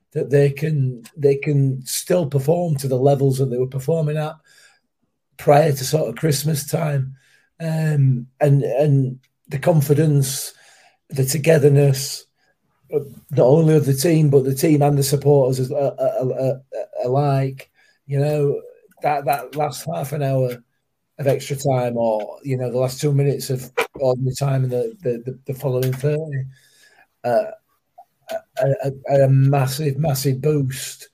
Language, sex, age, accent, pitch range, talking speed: English, male, 30-49, British, 130-150 Hz, 145 wpm